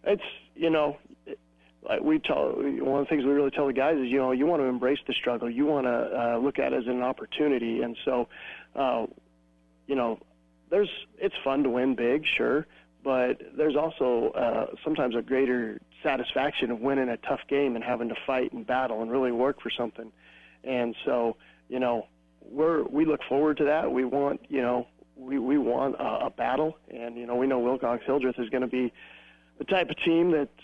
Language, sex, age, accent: English, male, 40-59, American